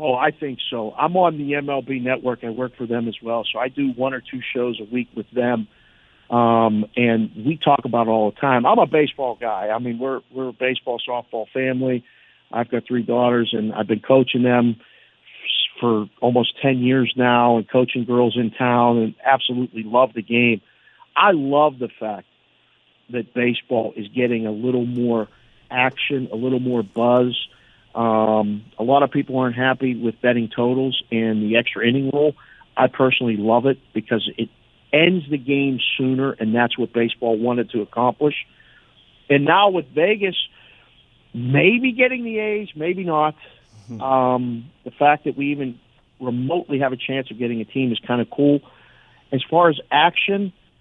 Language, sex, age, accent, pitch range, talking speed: English, male, 50-69, American, 115-140 Hz, 180 wpm